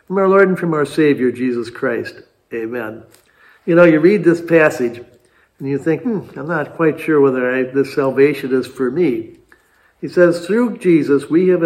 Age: 60-79